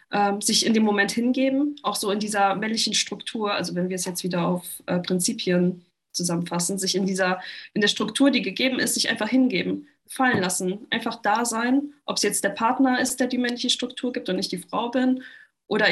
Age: 20-39